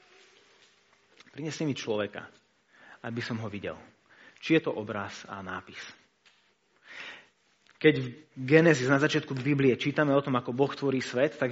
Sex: male